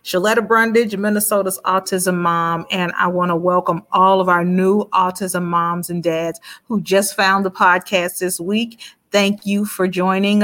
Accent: American